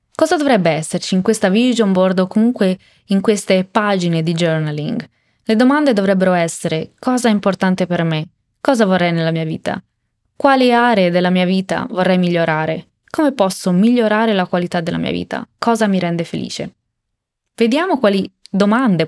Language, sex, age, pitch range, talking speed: Italian, female, 20-39, 175-225 Hz, 155 wpm